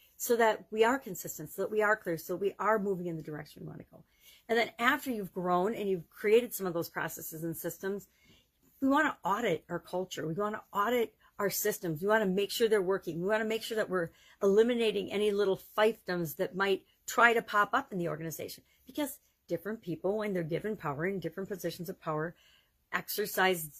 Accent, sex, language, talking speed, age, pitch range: American, female, English, 220 wpm, 50-69, 175-215 Hz